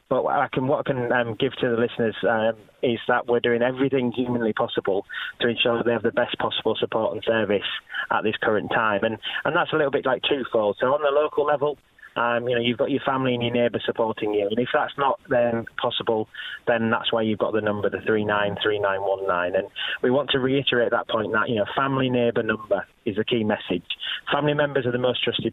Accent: British